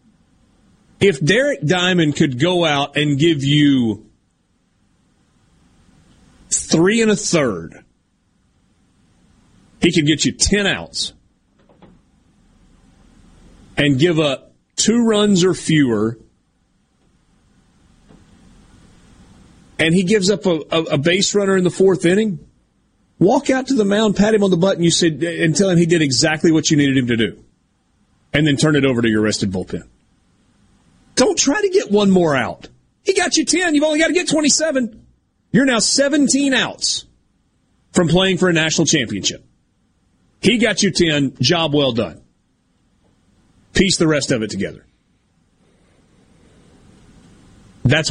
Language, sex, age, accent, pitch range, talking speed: English, male, 30-49, American, 130-195 Hz, 140 wpm